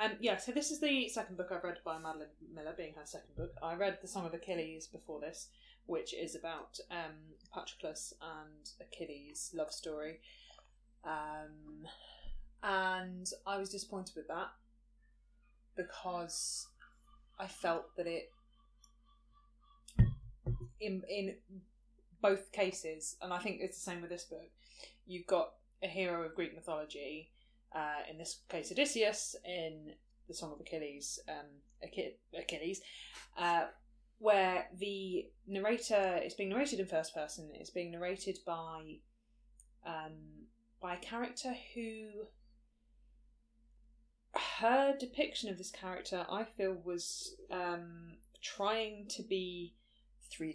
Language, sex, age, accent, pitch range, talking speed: English, female, 20-39, British, 165-230 Hz, 130 wpm